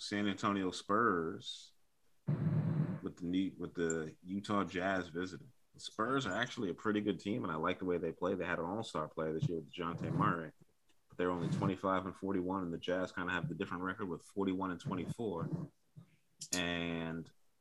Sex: male